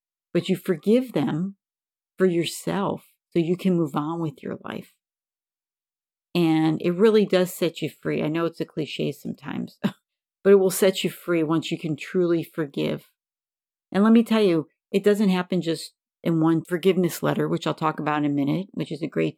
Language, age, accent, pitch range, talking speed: English, 50-69, American, 160-200 Hz, 190 wpm